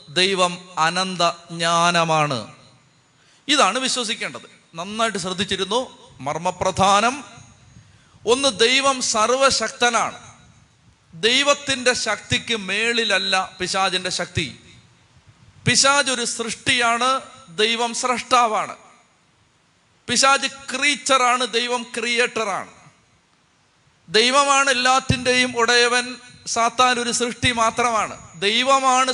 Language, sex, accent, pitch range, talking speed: Malayalam, male, native, 195-250 Hz, 70 wpm